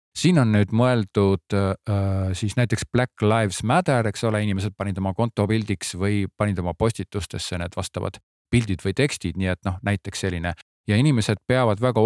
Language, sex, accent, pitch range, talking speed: Czech, male, Finnish, 95-115 Hz, 165 wpm